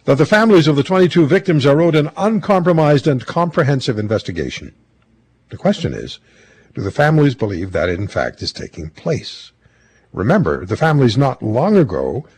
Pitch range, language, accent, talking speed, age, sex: 110-155 Hz, English, American, 165 wpm, 60-79, male